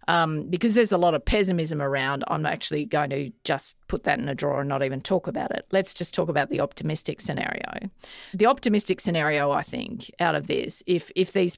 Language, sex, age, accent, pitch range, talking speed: English, female, 40-59, Australian, 155-195 Hz, 220 wpm